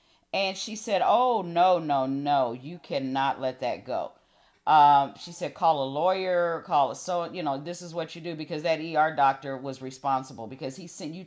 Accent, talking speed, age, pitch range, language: American, 200 wpm, 40-59, 140-190 Hz, English